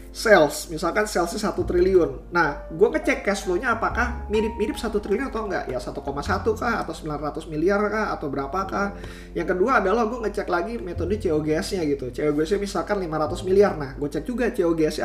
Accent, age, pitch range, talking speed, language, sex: native, 20-39, 145-200 Hz, 170 wpm, Indonesian, male